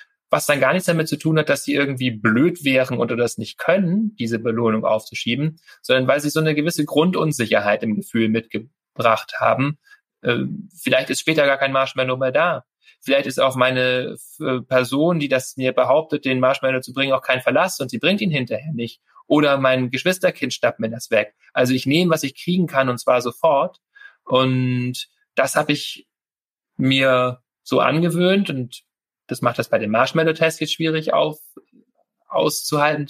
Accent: German